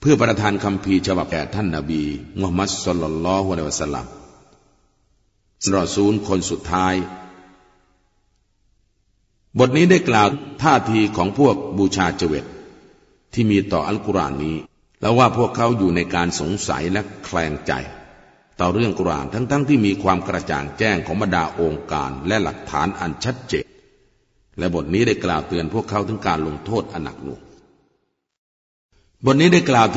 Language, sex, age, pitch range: Thai, male, 50-69, 85-110 Hz